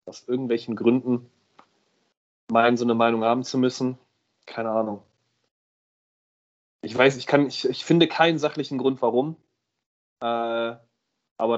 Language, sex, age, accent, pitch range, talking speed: German, male, 30-49, German, 115-180 Hz, 130 wpm